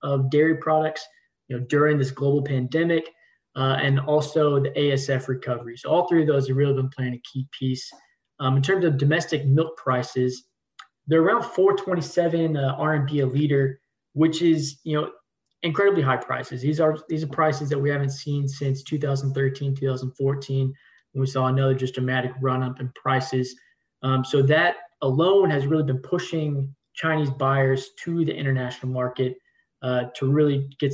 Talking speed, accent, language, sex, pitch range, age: 160 wpm, American, English, male, 130-155 Hz, 20-39